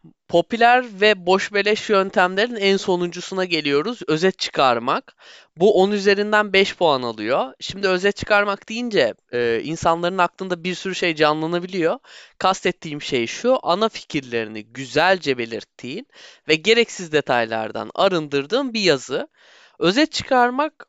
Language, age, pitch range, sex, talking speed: Turkish, 20-39, 150-225 Hz, male, 120 wpm